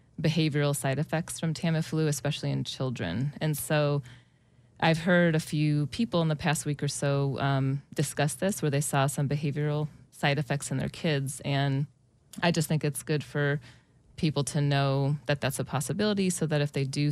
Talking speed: 185 wpm